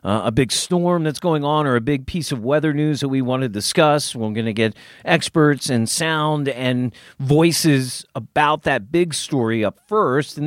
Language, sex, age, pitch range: English, male, 40-59, 125-170 Hz